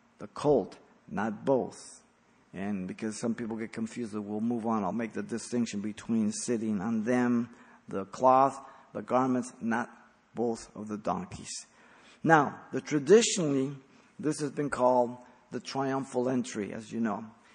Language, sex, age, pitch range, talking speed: English, male, 50-69, 115-150 Hz, 145 wpm